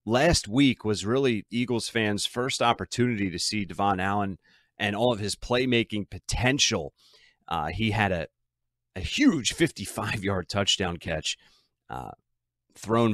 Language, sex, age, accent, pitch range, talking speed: English, male, 30-49, American, 95-120 Hz, 135 wpm